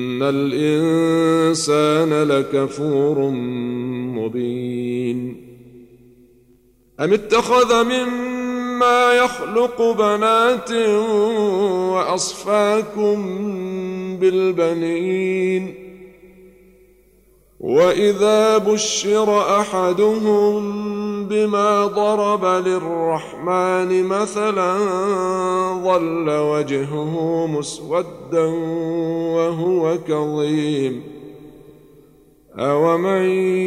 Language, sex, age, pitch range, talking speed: Arabic, male, 50-69, 165-205 Hz, 40 wpm